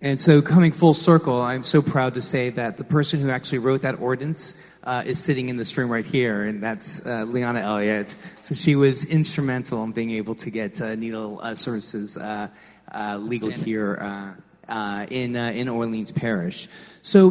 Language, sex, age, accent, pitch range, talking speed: English, male, 30-49, American, 110-135 Hz, 195 wpm